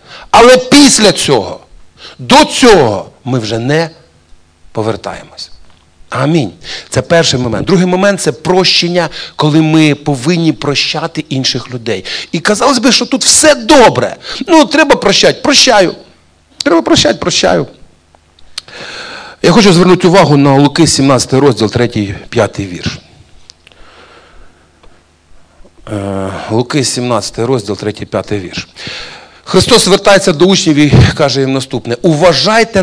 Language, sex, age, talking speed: Russian, male, 50-69, 115 wpm